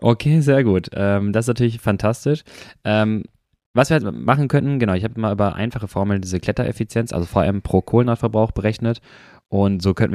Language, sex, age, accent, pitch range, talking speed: German, male, 20-39, German, 85-110 Hz, 170 wpm